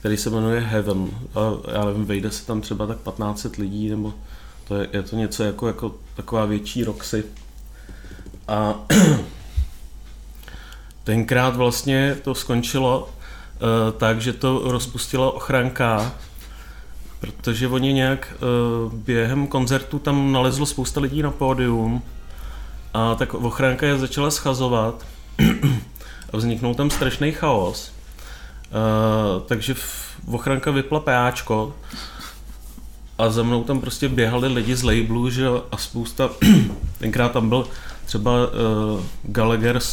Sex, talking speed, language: male, 125 wpm, Czech